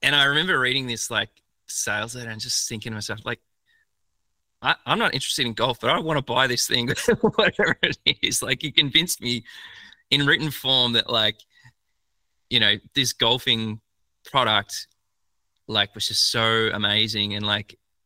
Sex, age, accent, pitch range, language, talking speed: male, 20-39, Australian, 105-130 Hz, English, 170 wpm